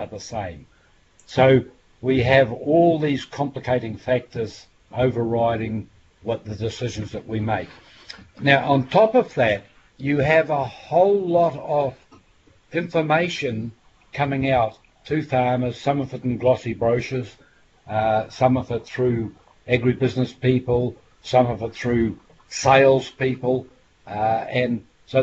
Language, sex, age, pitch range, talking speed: English, male, 60-79, 115-145 Hz, 130 wpm